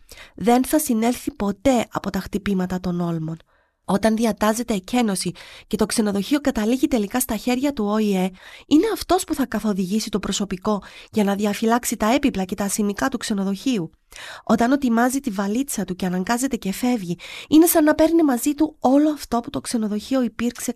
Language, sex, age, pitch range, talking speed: Greek, female, 30-49, 210-275 Hz, 170 wpm